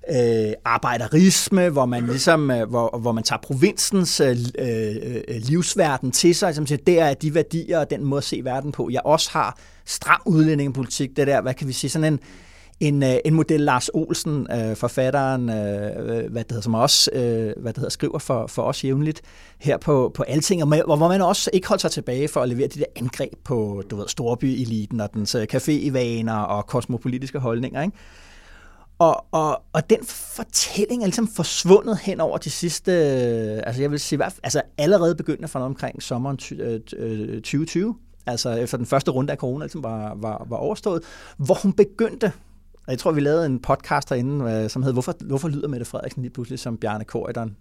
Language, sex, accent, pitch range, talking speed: Danish, male, native, 120-165 Hz, 195 wpm